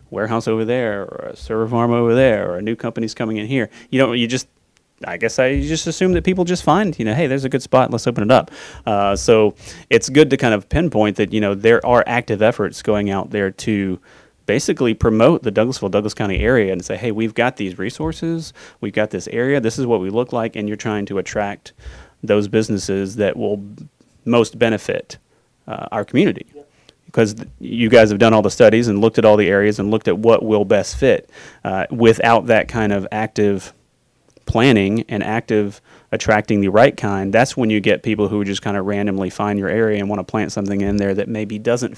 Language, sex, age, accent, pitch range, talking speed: English, male, 30-49, American, 100-115 Hz, 220 wpm